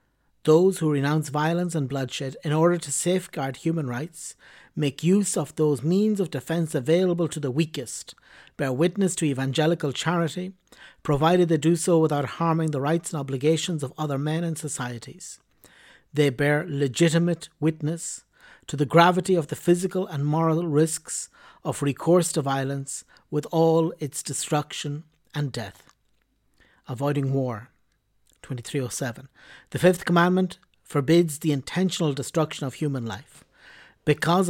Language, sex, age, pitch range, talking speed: English, male, 60-79, 140-170 Hz, 140 wpm